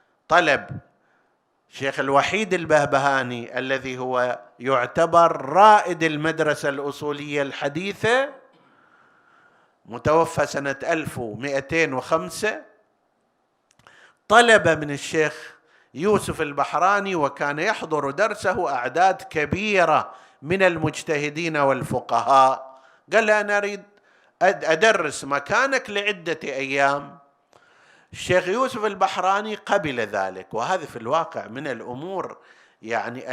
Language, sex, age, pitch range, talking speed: Arabic, male, 50-69, 140-190 Hz, 80 wpm